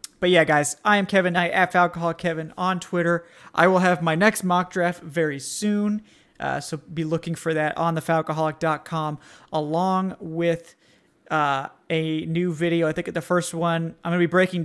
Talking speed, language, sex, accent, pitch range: 185 wpm, English, male, American, 150-175 Hz